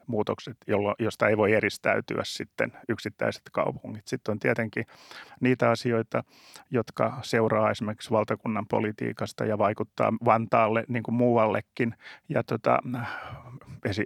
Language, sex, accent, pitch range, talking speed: Finnish, male, native, 110-125 Hz, 115 wpm